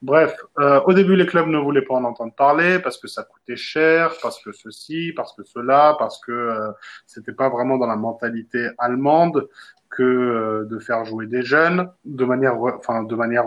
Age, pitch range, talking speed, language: 20-39, 115-145 Hz, 205 wpm, French